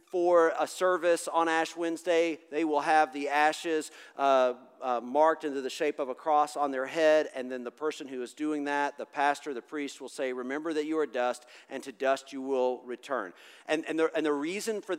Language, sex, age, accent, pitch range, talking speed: English, male, 40-59, American, 135-180 Hz, 215 wpm